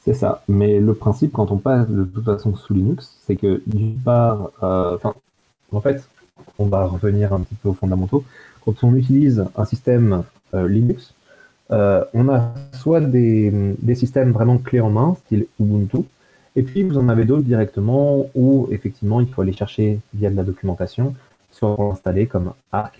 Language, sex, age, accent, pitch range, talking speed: French, male, 30-49, French, 100-125 Hz, 185 wpm